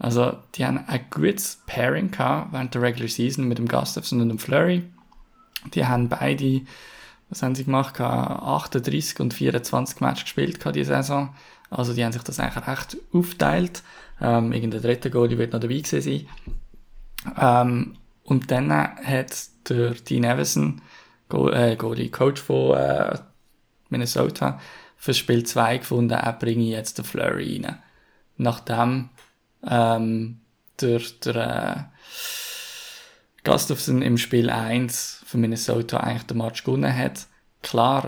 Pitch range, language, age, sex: 115-125 Hz, German, 10-29, male